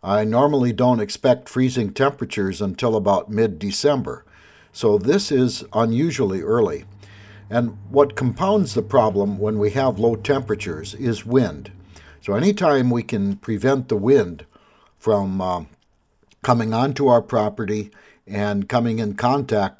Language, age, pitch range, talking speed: English, 60-79, 105-130 Hz, 130 wpm